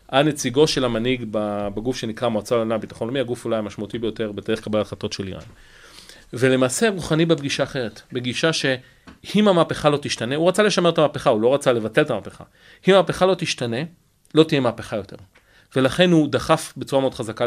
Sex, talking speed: male, 180 wpm